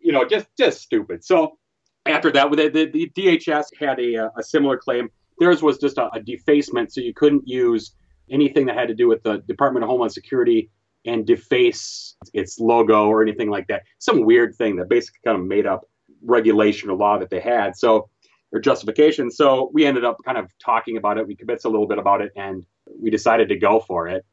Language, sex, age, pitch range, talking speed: English, male, 30-49, 105-155 Hz, 210 wpm